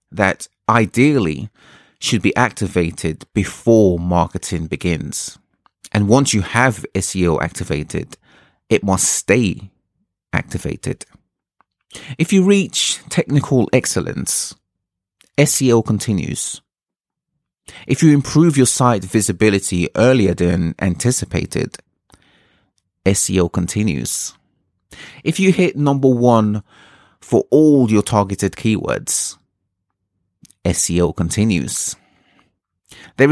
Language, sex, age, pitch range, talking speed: English, male, 30-49, 90-130 Hz, 90 wpm